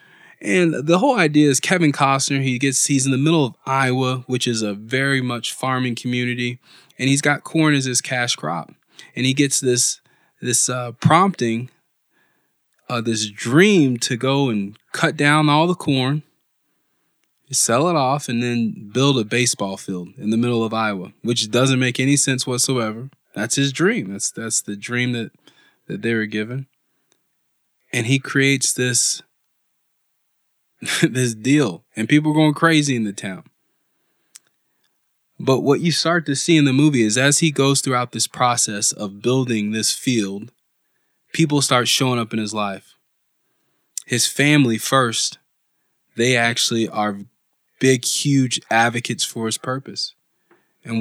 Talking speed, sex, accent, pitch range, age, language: 160 wpm, male, American, 115-140 Hz, 20-39, English